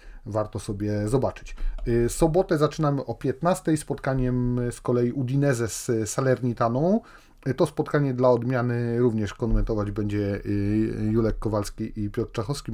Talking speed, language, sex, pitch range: 120 wpm, Polish, male, 110-135 Hz